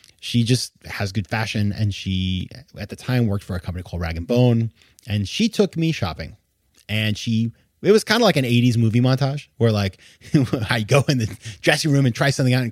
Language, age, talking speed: English, 30-49, 215 wpm